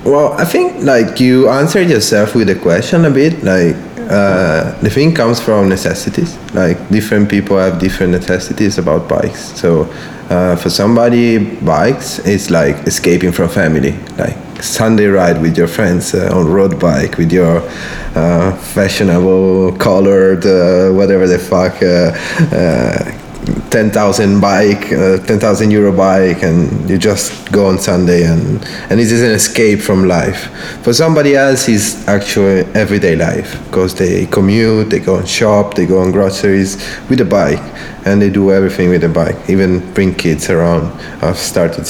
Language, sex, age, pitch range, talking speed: Italian, male, 20-39, 85-100 Hz, 160 wpm